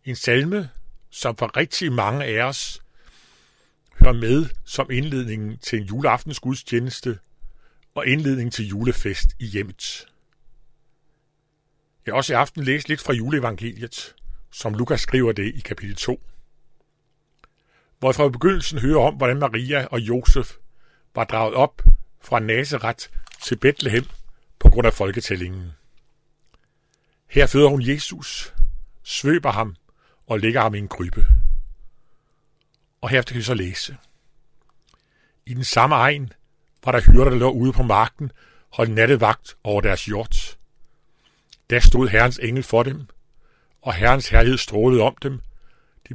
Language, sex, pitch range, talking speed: Danish, male, 115-140 Hz, 140 wpm